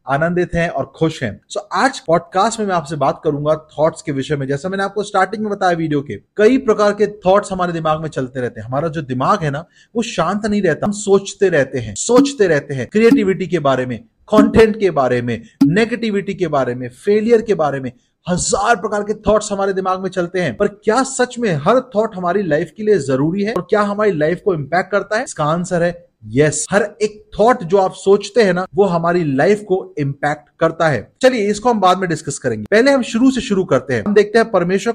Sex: male